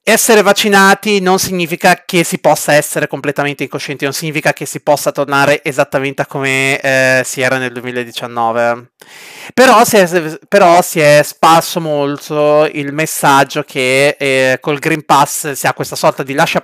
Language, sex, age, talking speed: Italian, male, 30-49, 155 wpm